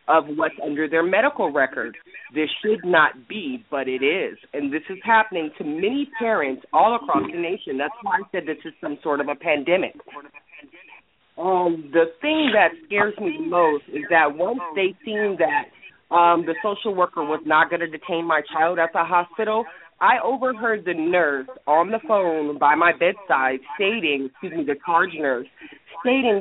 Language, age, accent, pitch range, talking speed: English, 30-49, American, 150-210 Hz, 180 wpm